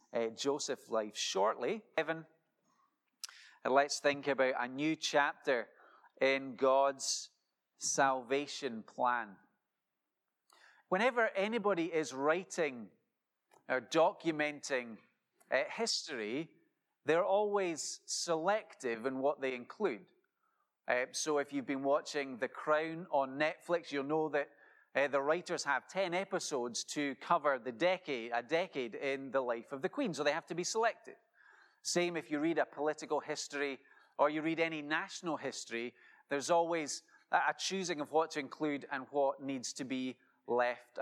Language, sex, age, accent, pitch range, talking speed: English, male, 30-49, British, 140-175 Hz, 140 wpm